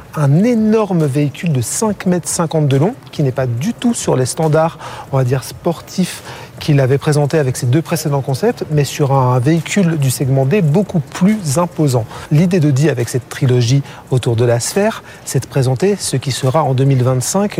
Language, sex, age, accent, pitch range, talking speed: French, male, 40-59, French, 135-170 Hz, 195 wpm